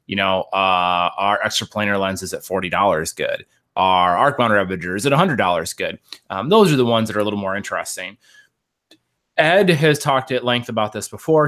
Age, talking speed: 30-49, 200 wpm